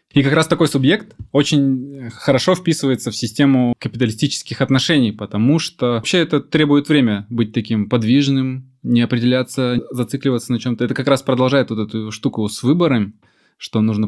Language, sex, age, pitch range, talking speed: Russian, male, 20-39, 110-135 Hz, 160 wpm